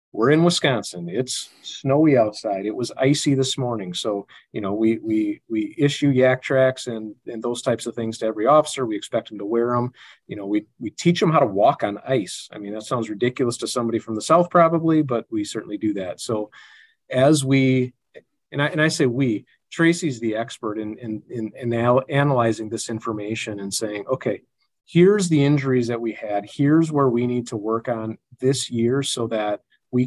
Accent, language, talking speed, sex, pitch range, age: American, English, 205 wpm, male, 110-140 Hz, 40-59